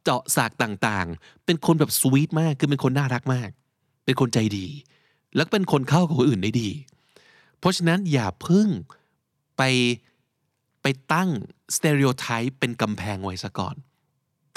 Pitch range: 115-150 Hz